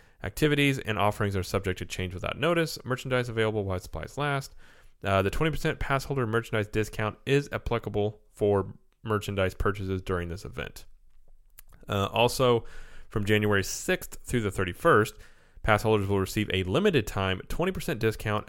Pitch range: 95-125 Hz